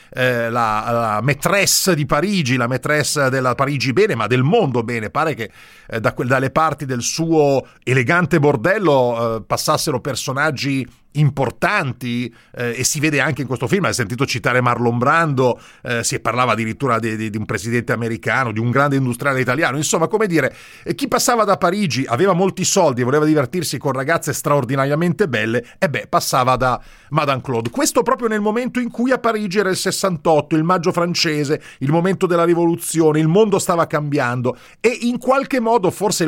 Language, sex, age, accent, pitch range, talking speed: Italian, male, 40-59, native, 130-185 Hz, 180 wpm